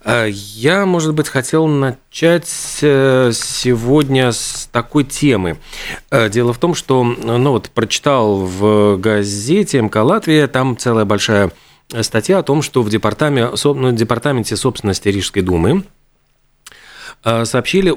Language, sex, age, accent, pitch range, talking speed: Russian, male, 40-59, native, 110-140 Hz, 105 wpm